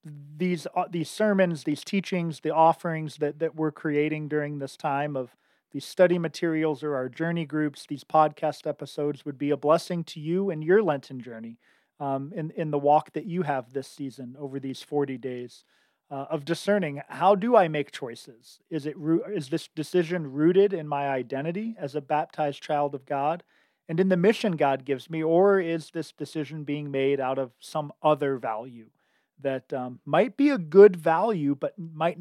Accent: American